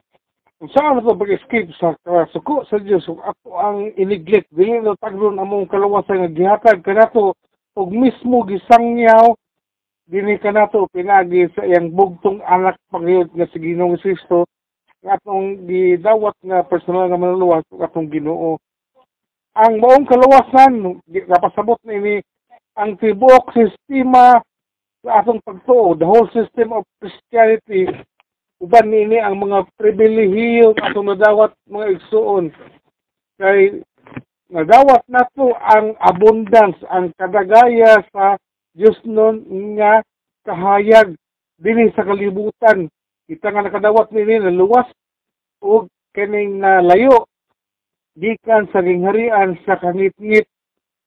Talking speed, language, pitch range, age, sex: 135 wpm, Filipino, 185-225 Hz, 50-69, male